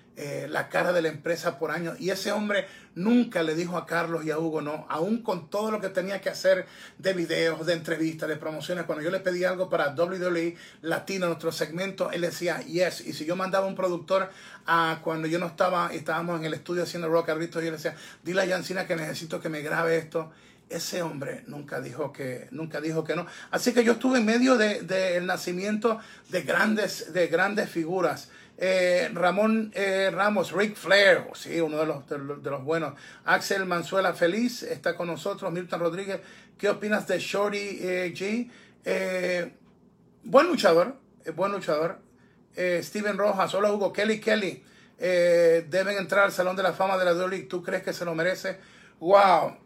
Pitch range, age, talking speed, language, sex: 170-200 Hz, 30-49, 195 wpm, Spanish, male